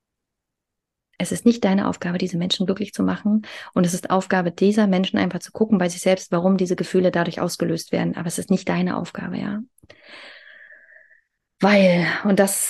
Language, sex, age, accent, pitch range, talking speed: German, female, 30-49, German, 185-215 Hz, 180 wpm